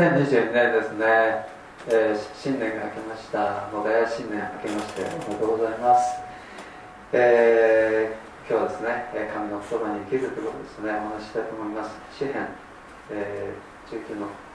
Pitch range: 110-155 Hz